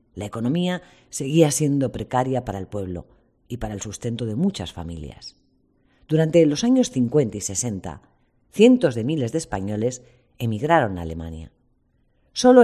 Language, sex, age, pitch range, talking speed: Spanish, female, 40-59, 105-155 Hz, 140 wpm